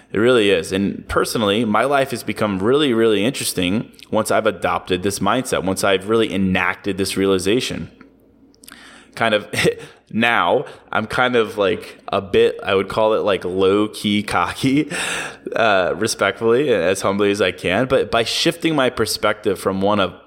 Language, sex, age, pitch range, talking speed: English, male, 20-39, 95-120 Hz, 165 wpm